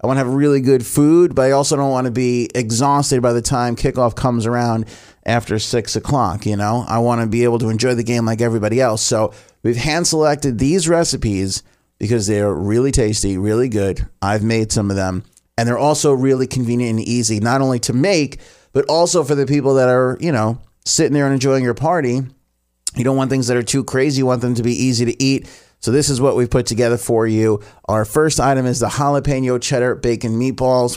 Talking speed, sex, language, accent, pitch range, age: 225 wpm, male, English, American, 110-135 Hz, 30-49